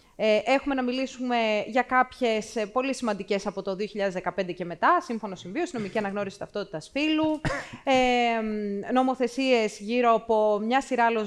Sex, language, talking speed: female, Greek, 140 wpm